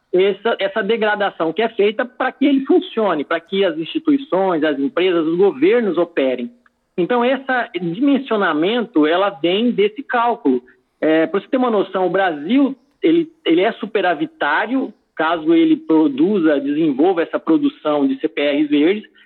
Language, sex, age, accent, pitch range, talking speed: Portuguese, male, 50-69, Brazilian, 175-275 Hz, 145 wpm